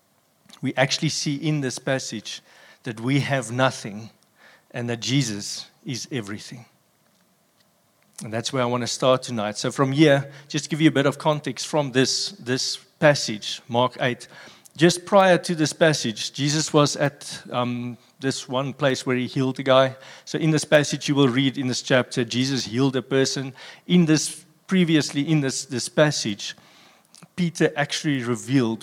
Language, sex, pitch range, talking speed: English, male, 120-150 Hz, 170 wpm